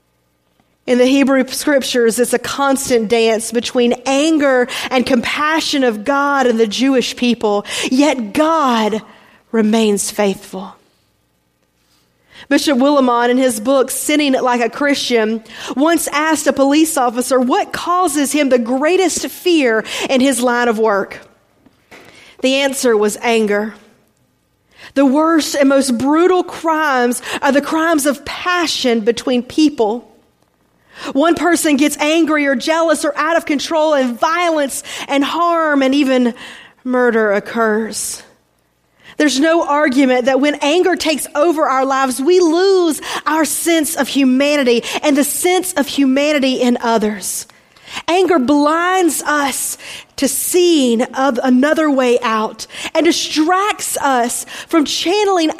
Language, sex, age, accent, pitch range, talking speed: English, female, 40-59, American, 245-315 Hz, 130 wpm